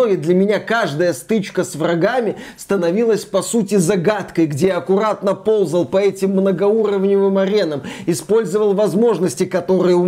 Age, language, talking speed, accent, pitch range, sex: 20-39, Russian, 135 wpm, native, 180-215 Hz, male